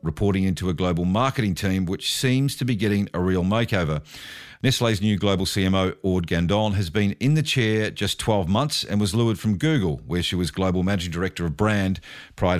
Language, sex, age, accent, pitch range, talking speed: English, male, 50-69, Australian, 90-115 Hz, 200 wpm